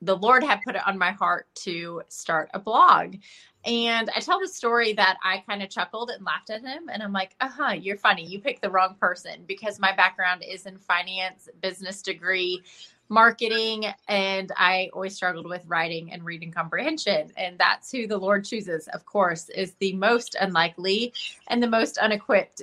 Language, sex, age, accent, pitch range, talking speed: English, female, 20-39, American, 185-215 Hz, 190 wpm